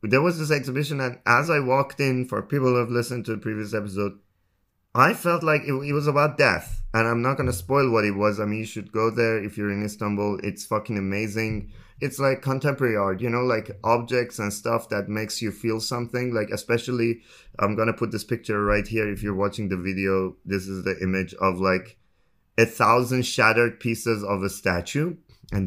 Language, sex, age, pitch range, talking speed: English, male, 20-39, 95-120 Hz, 215 wpm